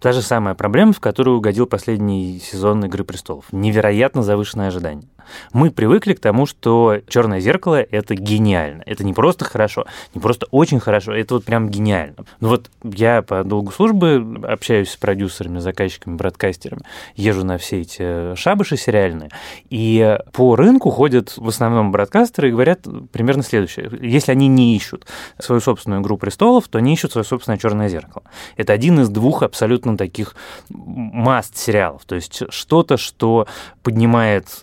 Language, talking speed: Russian, 155 wpm